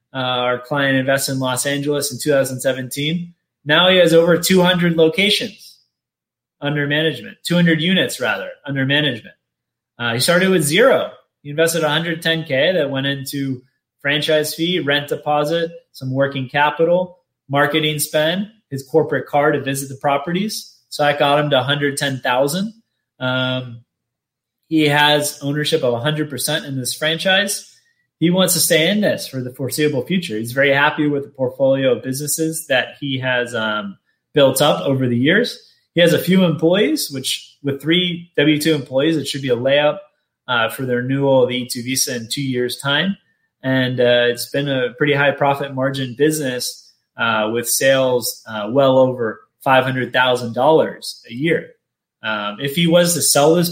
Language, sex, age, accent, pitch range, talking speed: English, male, 20-39, American, 130-165 Hz, 160 wpm